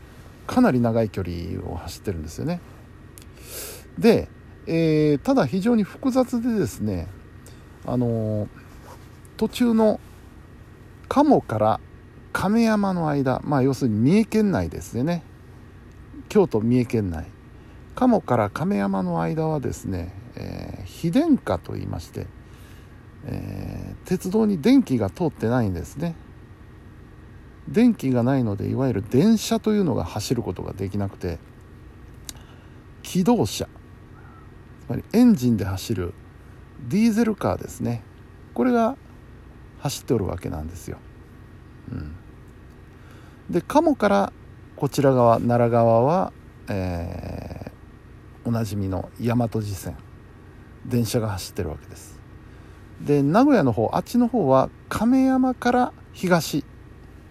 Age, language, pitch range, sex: 50-69, Japanese, 100-150 Hz, male